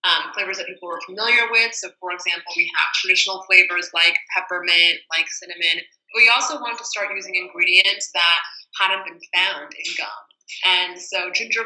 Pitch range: 175-220 Hz